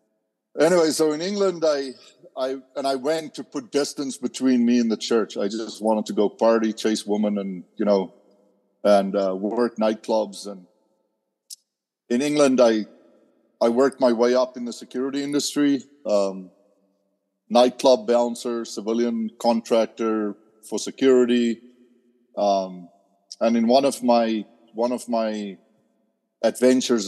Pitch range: 105-125 Hz